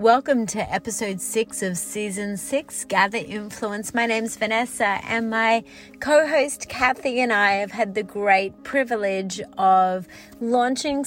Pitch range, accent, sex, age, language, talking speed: 200-245 Hz, Australian, female, 30-49, English, 135 wpm